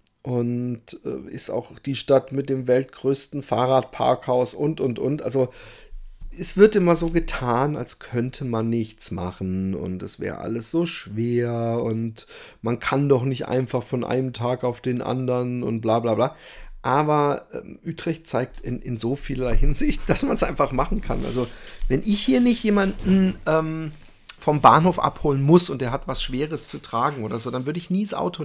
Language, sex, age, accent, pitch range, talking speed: German, male, 40-59, German, 120-145 Hz, 185 wpm